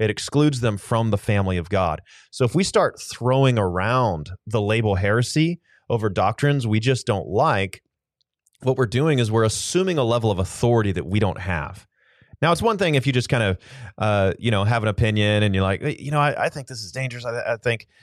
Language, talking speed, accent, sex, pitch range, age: English, 220 wpm, American, male, 100-130 Hz, 30-49